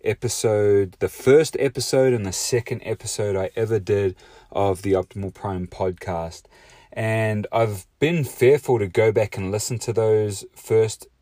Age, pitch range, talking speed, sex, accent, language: 30-49, 95-115 Hz, 150 wpm, male, Australian, English